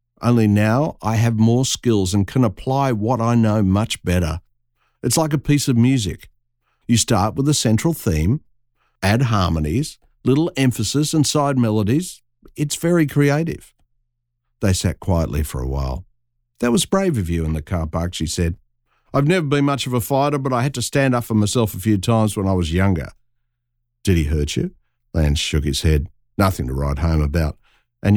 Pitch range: 80-130 Hz